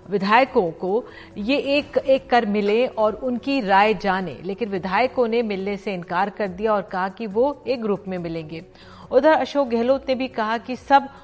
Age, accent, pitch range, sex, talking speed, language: 50-69, native, 185-235 Hz, female, 185 wpm, Hindi